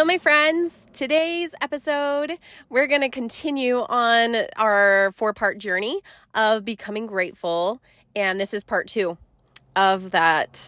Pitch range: 200-270 Hz